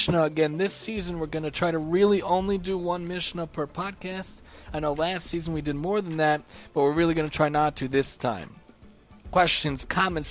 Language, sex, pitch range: English, male, 155-190 Hz